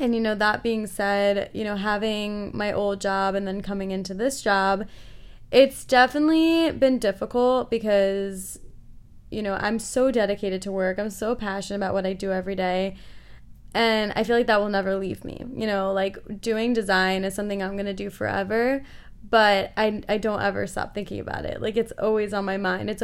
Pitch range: 195-230 Hz